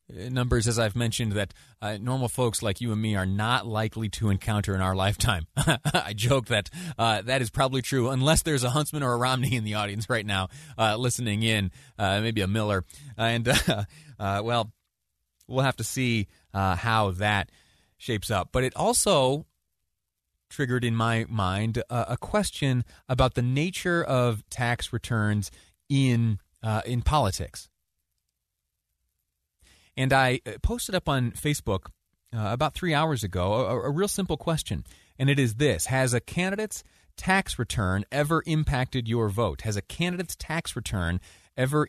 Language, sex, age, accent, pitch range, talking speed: English, male, 30-49, American, 105-130 Hz, 165 wpm